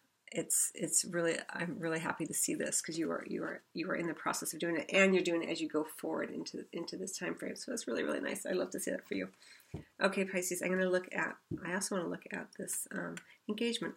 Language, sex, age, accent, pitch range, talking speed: English, female, 40-59, American, 170-210 Hz, 265 wpm